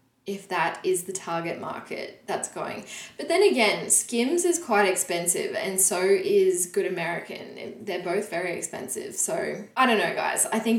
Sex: female